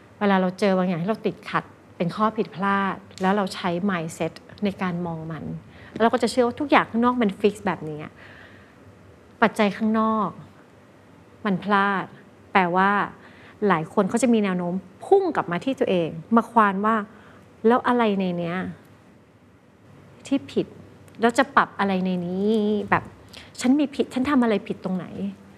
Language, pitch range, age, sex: Thai, 175-225 Hz, 30-49, female